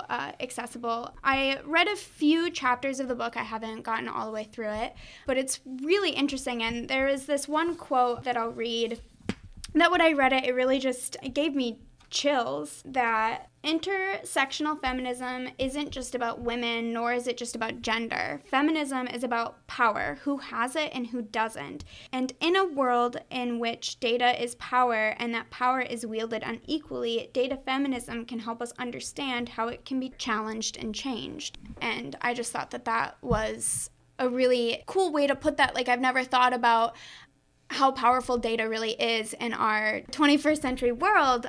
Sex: female